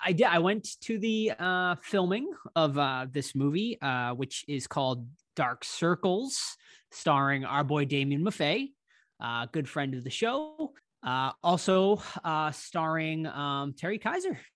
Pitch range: 135-185 Hz